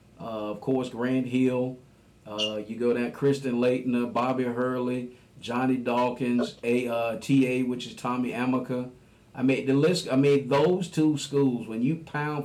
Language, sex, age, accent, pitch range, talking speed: English, male, 50-69, American, 115-125 Hz, 145 wpm